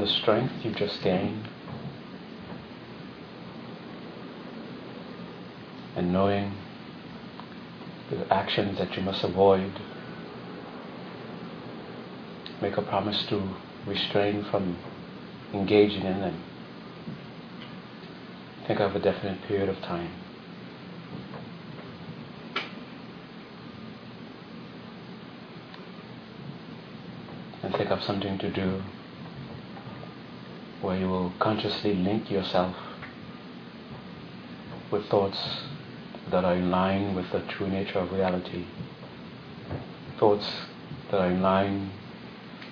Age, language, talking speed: 40-59, English, 80 wpm